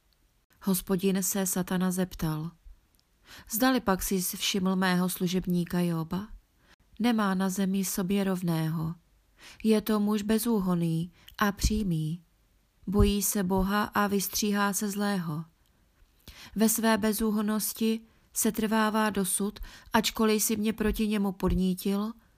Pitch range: 175-210 Hz